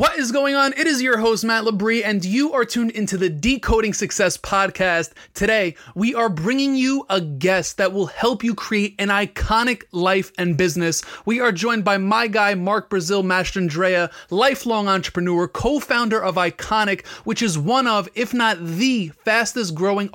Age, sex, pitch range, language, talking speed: 30-49, male, 180-225 Hz, English, 170 wpm